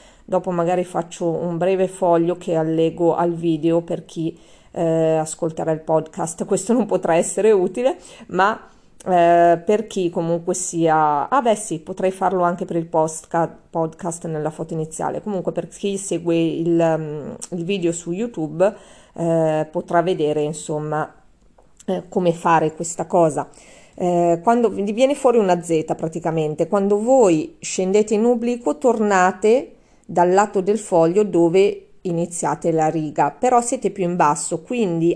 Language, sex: Italian, female